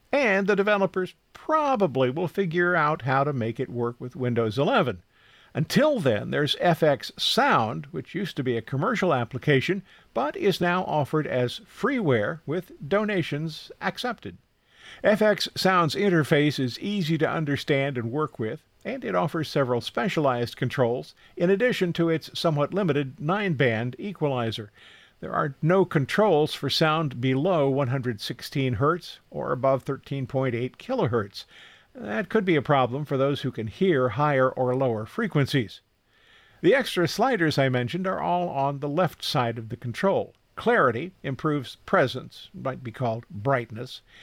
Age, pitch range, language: 50-69, 125-175 Hz, English